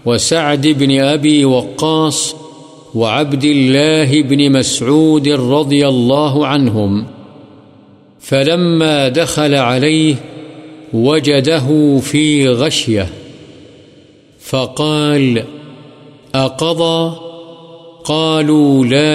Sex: male